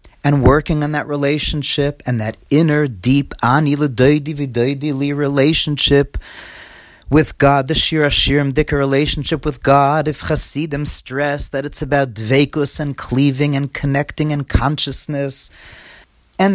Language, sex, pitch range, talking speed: English, male, 120-150 Hz, 110 wpm